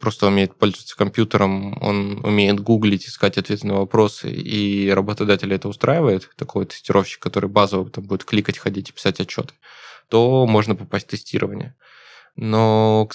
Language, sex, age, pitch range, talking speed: Russian, male, 20-39, 100-120 Hz, 150 wpm